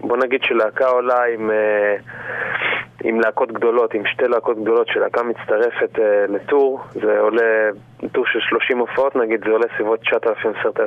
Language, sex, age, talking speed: Hebrew, male, 20-39, 150 wpm